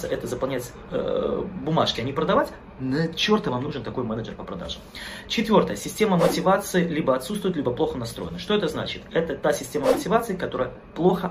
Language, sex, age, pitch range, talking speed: Russian, male, 20-39, 125-185 Hz, 170 wpm